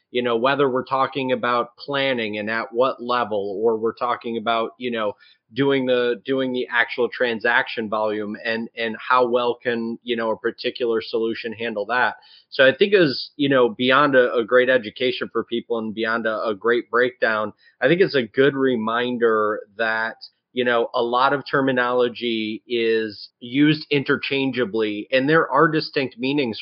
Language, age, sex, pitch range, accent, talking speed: English, 30-49, male, 115-140 Hz, American, 170 wpm